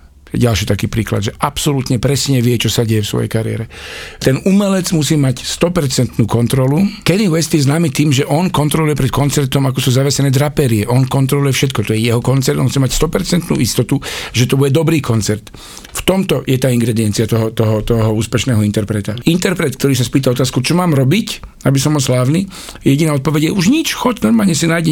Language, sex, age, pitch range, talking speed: Slovak, male, 50-69, 125-160 Hz, 195 wpm